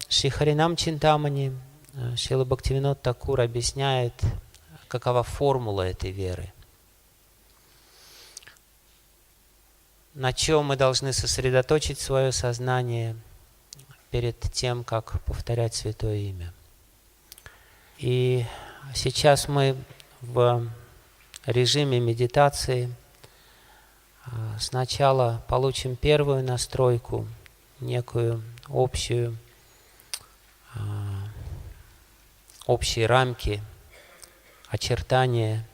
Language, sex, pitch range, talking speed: Russian, male, 105-130 Hz, 65 wpm